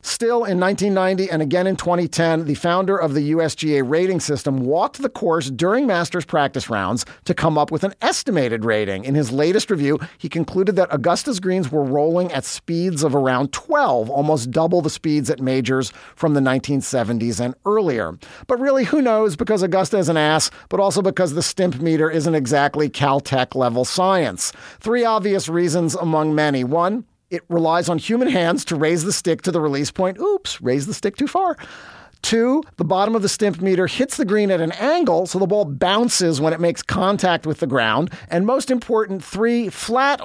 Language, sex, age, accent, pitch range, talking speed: English, male, 40-59, American, 150-195 Hz, 190 wpm